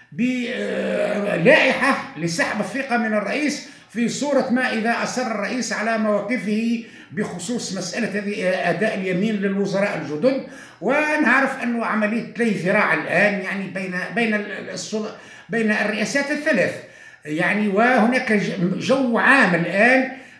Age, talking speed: 60-79, 105 wpm